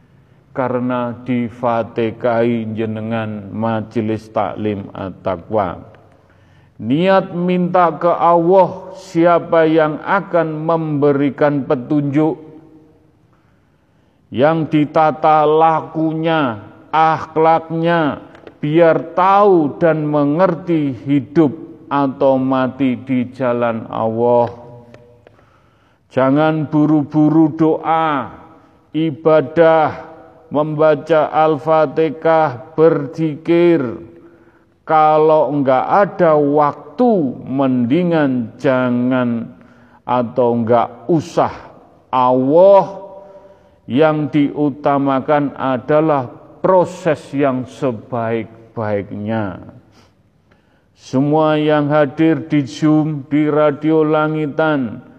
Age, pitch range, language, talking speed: 40-59, 125-160 Hz, Indonesian, 65 wpm